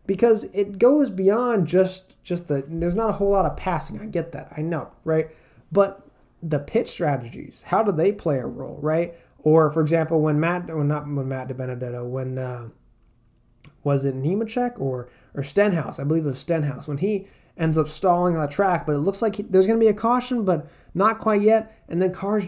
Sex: male